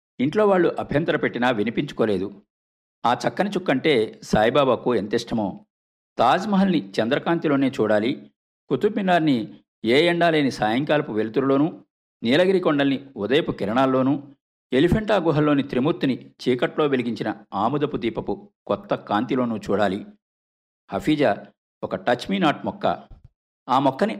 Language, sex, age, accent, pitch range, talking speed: Telugu, male, 50-69, native, 100-155 Hz, 100 wpm